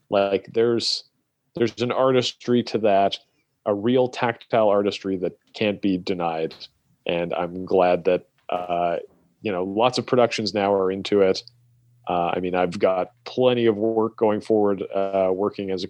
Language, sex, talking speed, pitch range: English, male, 160 wpm, 95-110 Hz